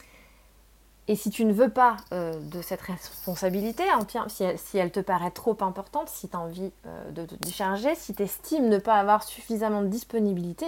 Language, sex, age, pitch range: French, female, 20-39, 190-245 Hz